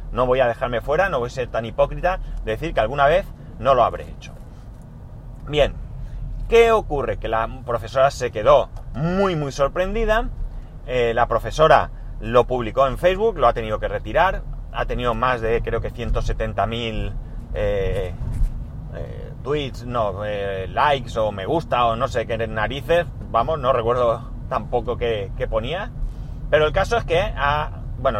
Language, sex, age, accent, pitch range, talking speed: Spanish, male, 30-49, Spanish, 115-145 Hz, 165 wpm